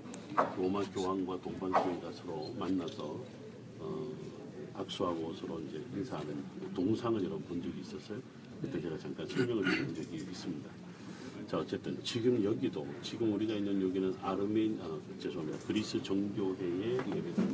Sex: male